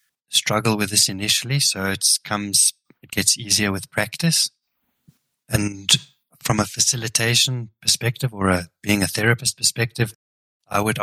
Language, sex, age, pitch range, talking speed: English, male, 20-39, 95-120 Hz, 135 wpm